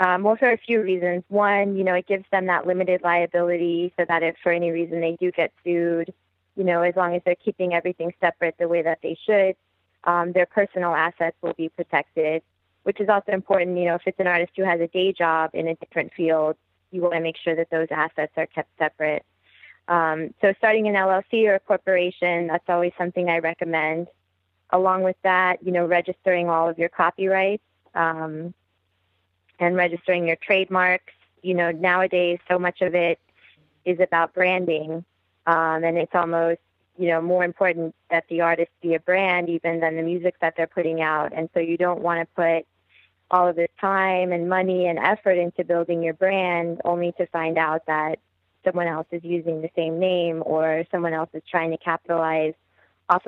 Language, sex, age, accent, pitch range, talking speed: English, female, 20-39, American, 165-180 Hz, 195 wpm